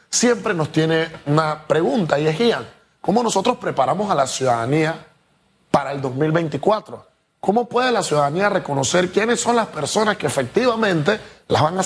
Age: 30-49